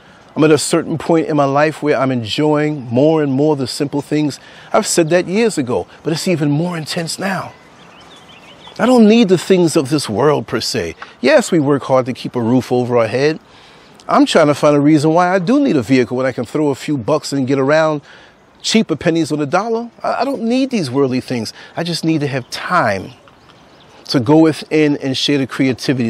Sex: male